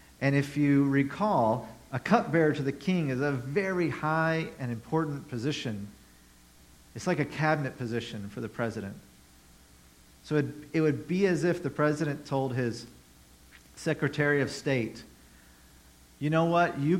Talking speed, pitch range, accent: 150 wpm, 105-150 Hz, American